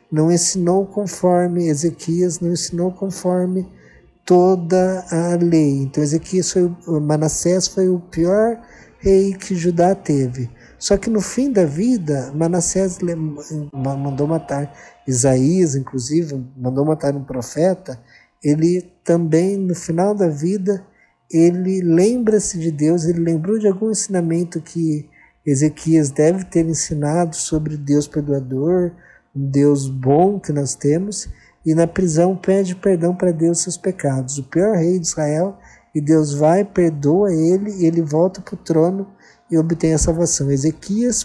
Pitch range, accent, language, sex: 145-185 Hz, Brazilian, Portuguese, male